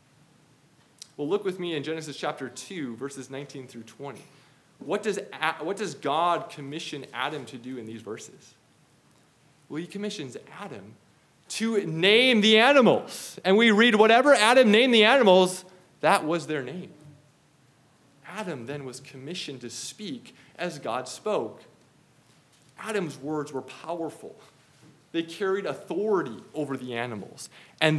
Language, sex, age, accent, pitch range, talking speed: English, male, 20-39, American, 135-175 Hz, 135 wpm